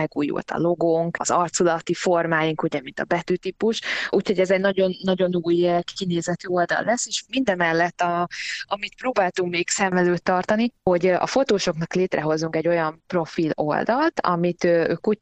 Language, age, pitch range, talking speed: Hungarian, 20-39, 155-190 Hz, 150 wpm